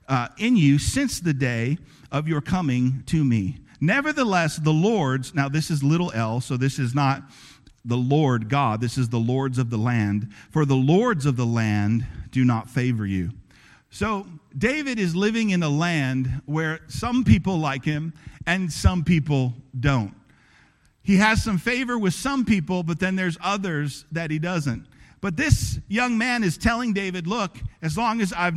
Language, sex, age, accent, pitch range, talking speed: English, male, 50-69, American, 135-205 Hz, 180 wpm